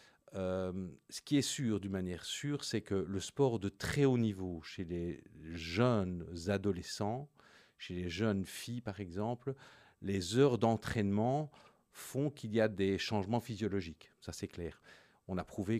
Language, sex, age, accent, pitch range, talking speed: French, male, 50-69, French, 90-110 Hz, 160 wpm